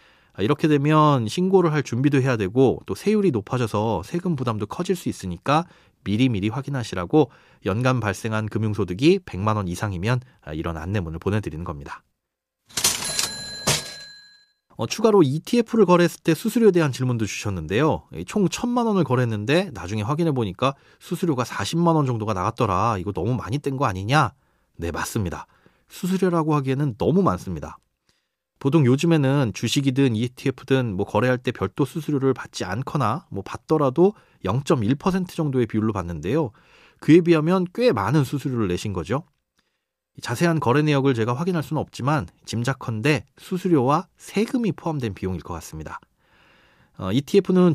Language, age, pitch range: Korean, 30-49, 110-165 Hz